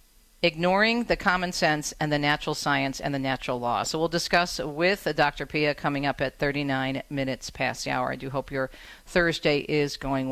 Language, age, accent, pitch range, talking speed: English, 50-69, American, 145-195 Hz, 190 wpm